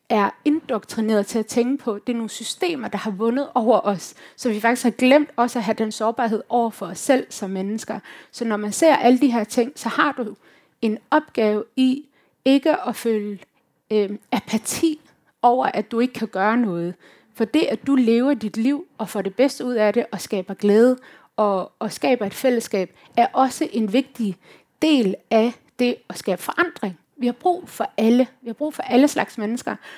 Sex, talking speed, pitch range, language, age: female, 200 wpm, 215-265 Hz, Danish, 30-49